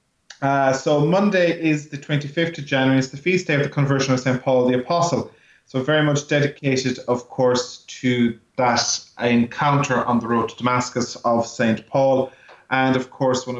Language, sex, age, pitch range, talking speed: English, male, 30-49, 110-135 Hz, 180 wpm